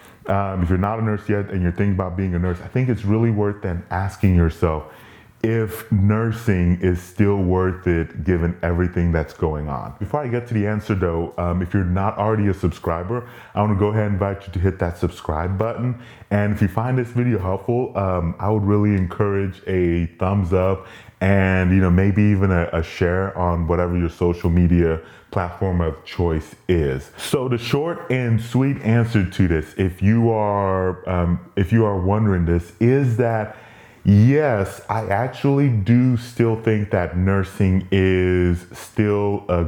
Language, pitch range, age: English, 90-110 Hz, 30-49